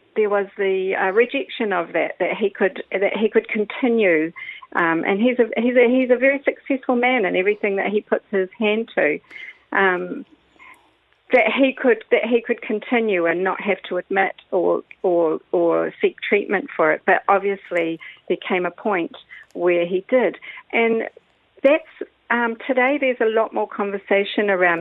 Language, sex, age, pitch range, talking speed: English, female, 50-69, 185-235 Hz, 170 wpm